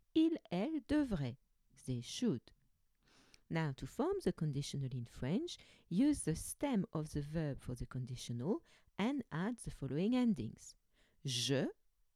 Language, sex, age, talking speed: English, female, 40-59, 135 wpm